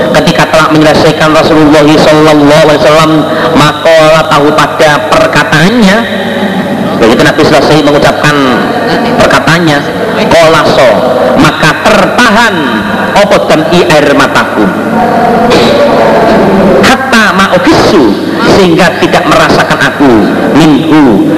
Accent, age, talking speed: native, 50-69, 75 wpm